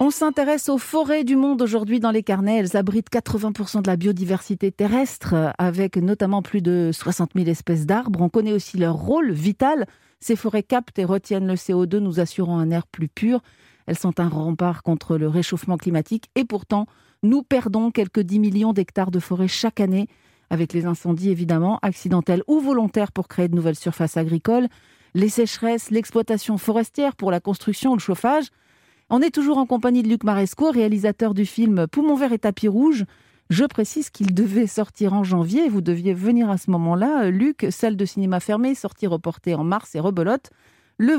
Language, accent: French, French